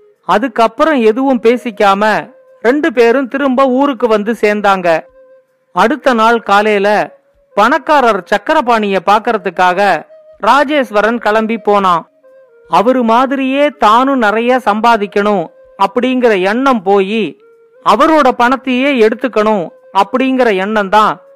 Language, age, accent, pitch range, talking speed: Tamil, 50-69, native, 210-275 Hz, 85 wpm